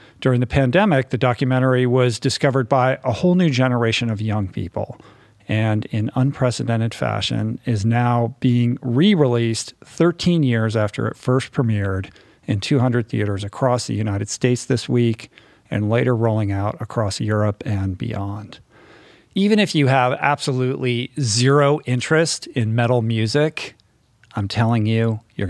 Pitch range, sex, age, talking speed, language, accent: 110-130 Hz, male, 50-69, 140 wpm, English, American